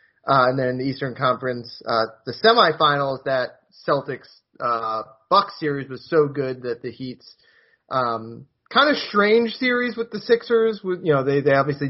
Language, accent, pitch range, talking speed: English, American, 125-160 Hz, 175 wpm